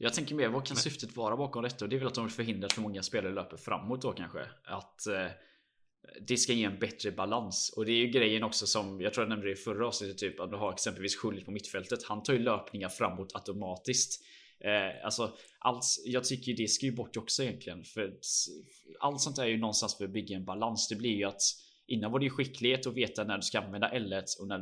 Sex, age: male, 10-29